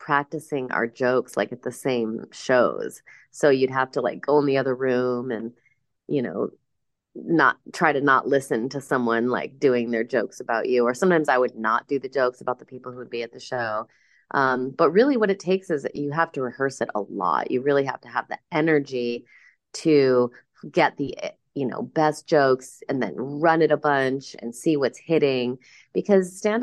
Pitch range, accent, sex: 125-155 Hz, American, female